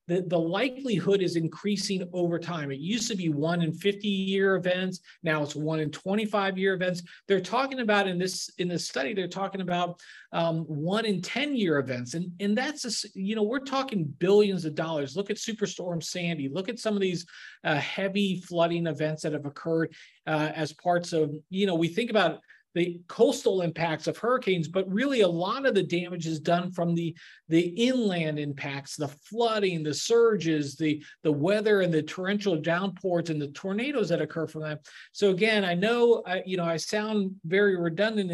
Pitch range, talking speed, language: 160-205 Hz, 190 wpm, English